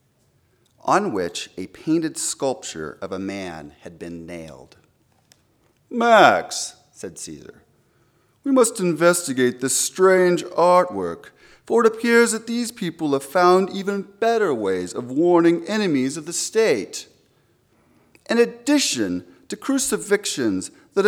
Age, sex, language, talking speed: 40-59, male, English, 120 wpm